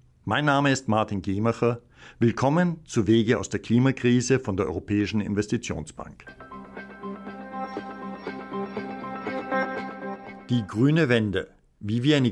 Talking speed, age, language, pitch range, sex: 100 wpm, 60-79, German, 100-130 Hz, male